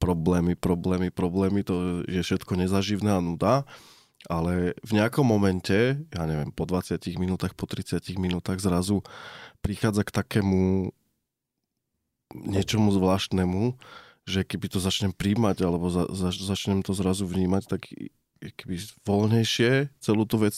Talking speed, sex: 130 wpm, male